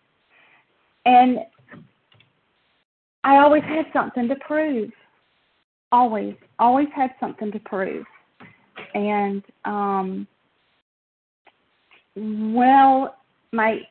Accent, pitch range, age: American, 190-245 Hz, 40-59